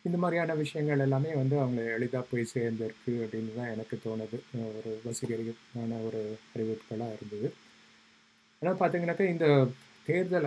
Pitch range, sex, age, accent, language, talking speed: 115-135 Hz, male, 20-39, native, Tamil, 125 wpm